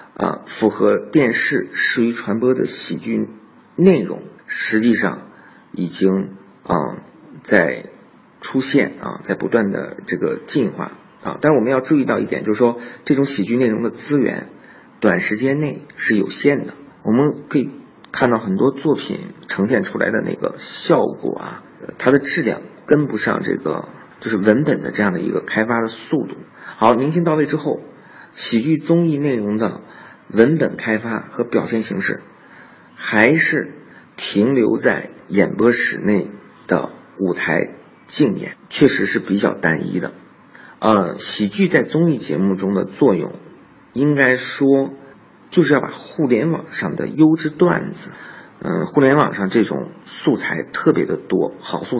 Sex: male